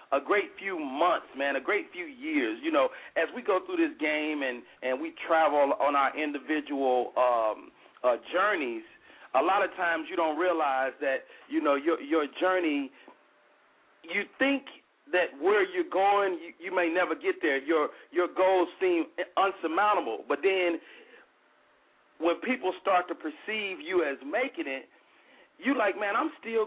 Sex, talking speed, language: male, 165 wpm, English